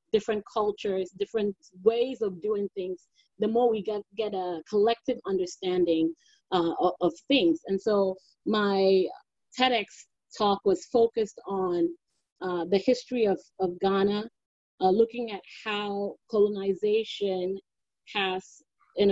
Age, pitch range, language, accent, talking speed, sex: 30-49, 185-230 Hz, English, American, 125 wpm, female